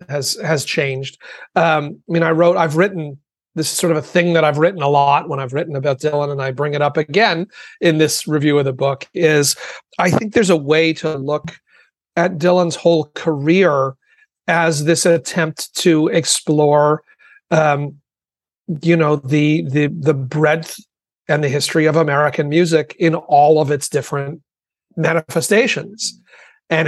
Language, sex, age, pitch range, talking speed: English, male, 40-59, 150-170 Hz, 165 wpm